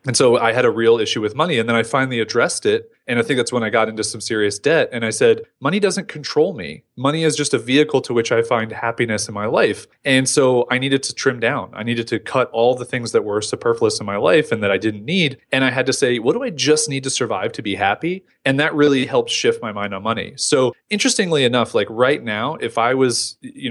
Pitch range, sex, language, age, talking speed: 110-150 Hz, male, English, 30-49, 265 wpm